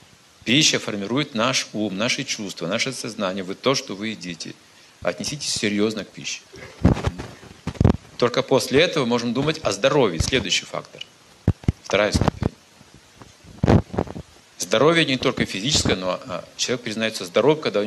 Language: Russian